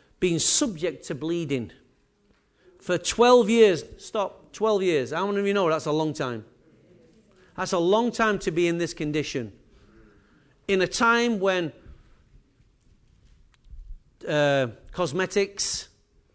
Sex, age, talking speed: male, 40-59, 125 wpm